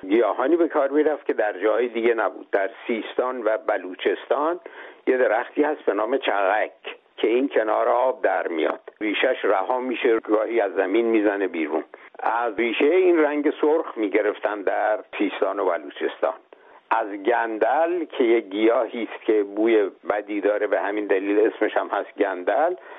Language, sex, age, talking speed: Persian, male, 60-79, 160 wpm